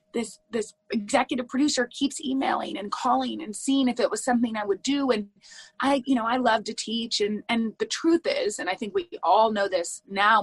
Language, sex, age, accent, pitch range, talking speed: English, female, 30-49, American, 200-265 Hz, 220 wpm